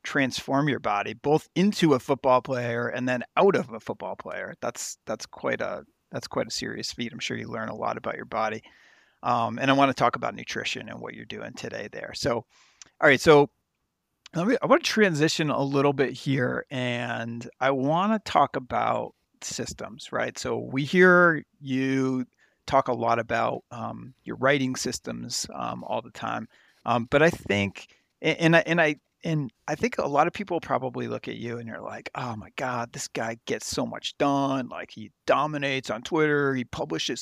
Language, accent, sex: English, American, male